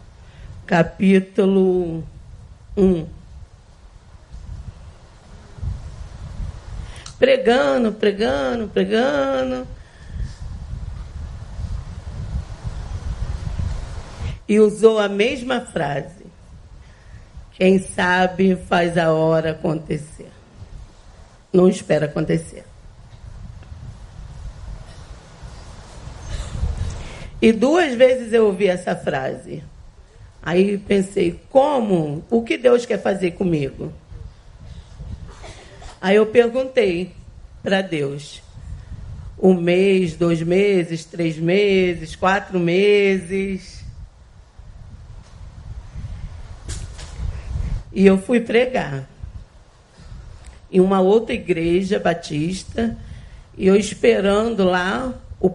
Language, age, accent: Portuguese, 40-59, Brazilian